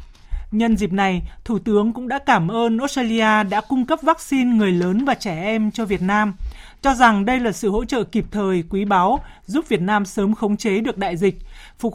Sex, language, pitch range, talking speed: male, Vietnamese, 200-245 Hz, 215 wpm